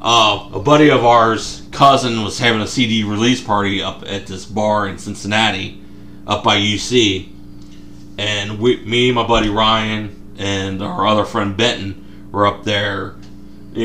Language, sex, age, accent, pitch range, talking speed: English, male, 30-49, American, 100-120 Hz, 160 wpm